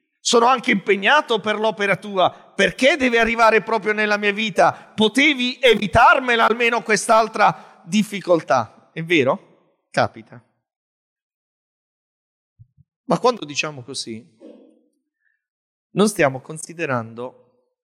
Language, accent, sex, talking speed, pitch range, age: Italian, native, male, 95 wpm, 125-215 Hz, 30-49